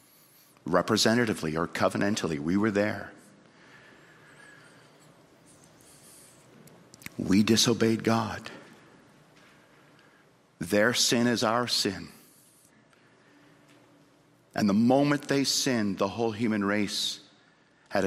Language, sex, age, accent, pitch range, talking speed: English, male, 50-69, American, 105-175 Hz, 80 wpm